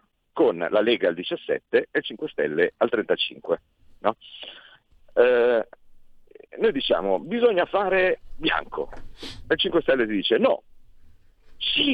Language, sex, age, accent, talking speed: Italian, male, 50-69, native, 120 wpm